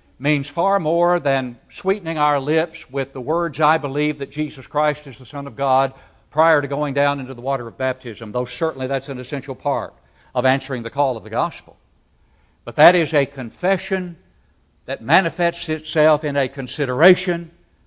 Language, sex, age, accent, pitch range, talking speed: English, male, 60-79, American, 85-140 Hz, 180 wpm